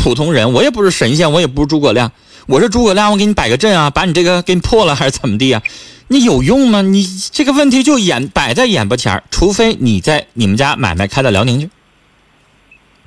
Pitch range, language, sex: 135-220 Hz, Chinese, male